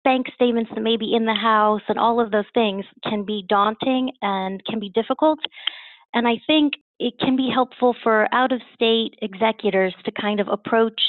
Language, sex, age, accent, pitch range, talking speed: English, female, 30-49, American, 195-235 Hz, 185 wpm